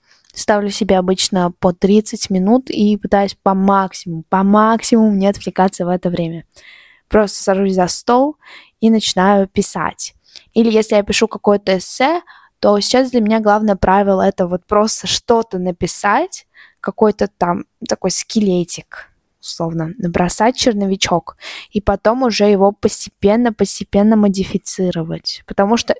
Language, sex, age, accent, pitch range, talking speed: Russian, female, 20-39, native, 185-220 Hz, 130 wpm